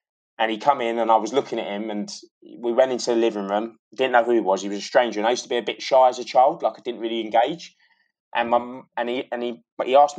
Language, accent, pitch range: English, British, 105-120 Hz